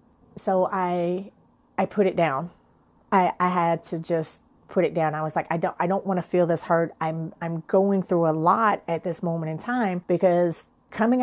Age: 30-49